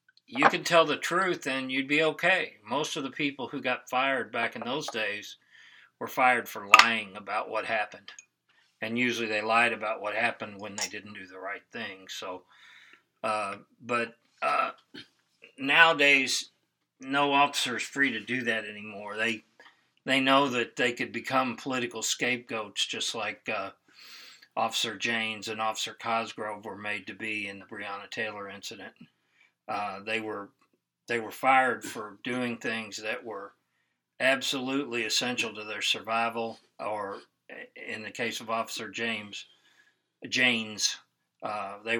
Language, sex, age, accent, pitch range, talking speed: English, male, 40-59, American, 105-125 Hz, 150 wpm